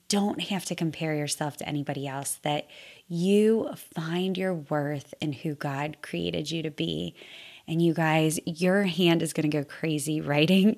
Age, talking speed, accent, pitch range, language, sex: 20-39, 175 wpm, American, 155-185 Hz, English, female